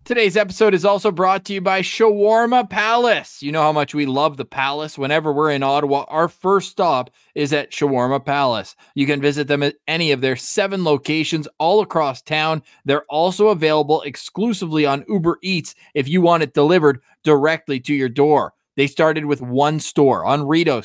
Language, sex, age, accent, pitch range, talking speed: English, male, 20-39, American, 135-170 Hz, 185 wpm